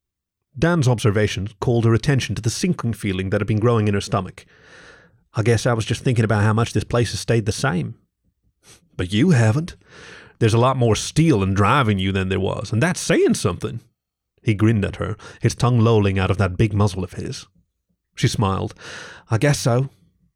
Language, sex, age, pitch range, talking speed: English, male, 30-49, 100-130 Hz, 200 wpm